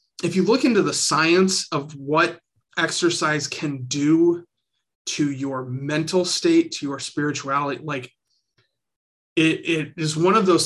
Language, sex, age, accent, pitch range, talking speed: English, male, 30-49, American, 140-170 Hz, 140 wpm